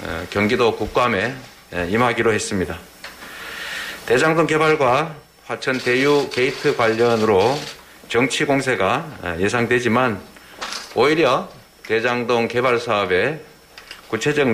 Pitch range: 95-150 Hz